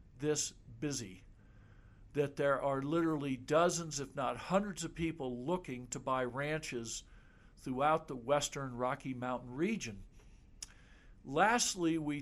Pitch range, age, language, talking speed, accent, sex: 130-170 Hz, 60-79, English, 120 wpm, American, male